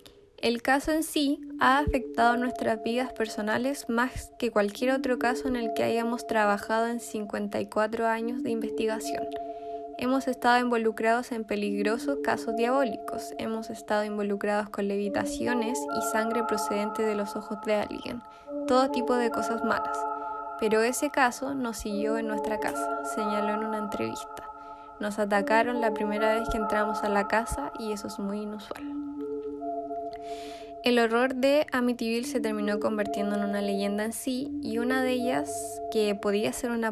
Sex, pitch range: female, 215-240 Hz